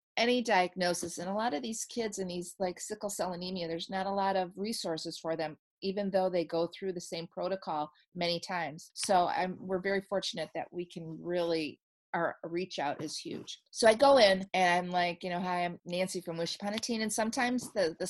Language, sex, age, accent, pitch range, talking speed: English, female, 30-49, American, 170-200 Hz, 220 wpm